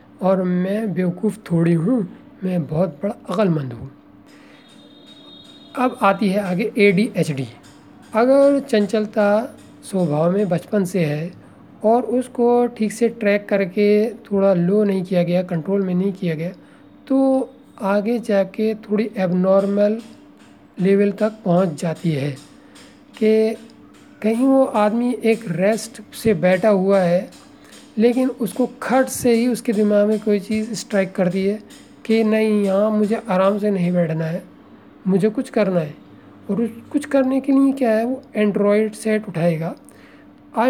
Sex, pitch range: male, 190-230 Hz